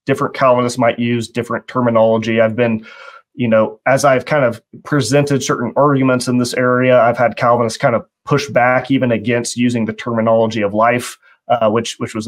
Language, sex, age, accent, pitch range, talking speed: English, male, 30-49, American, 115-140 Hz, 185 wpm